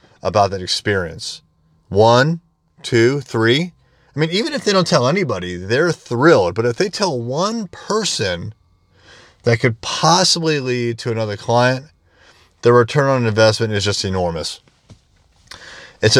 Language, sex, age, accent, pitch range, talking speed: English, male, 30-49, American, 95-125 Hz, 135 wpm